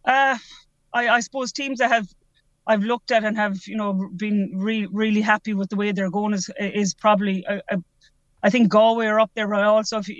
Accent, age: Irish, 30-49